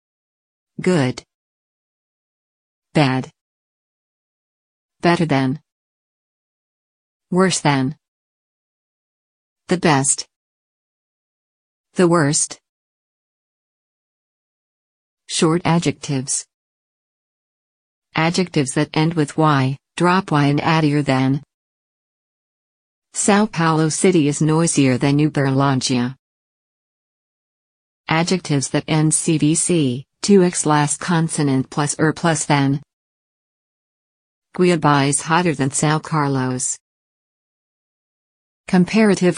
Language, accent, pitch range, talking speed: English, American, 135-165 Hz, 70 wpm